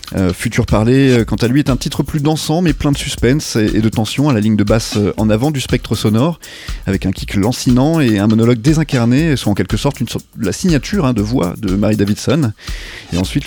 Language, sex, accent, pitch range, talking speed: French, male, French, 110-140 Hz, 235 wpm